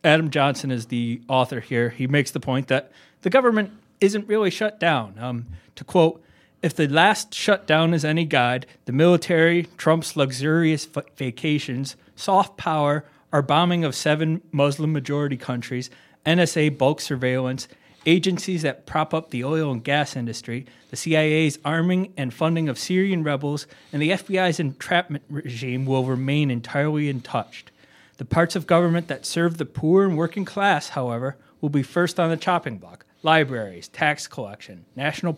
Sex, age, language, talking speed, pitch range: male, 30-49, English, 155 wpm, 130-165 Hz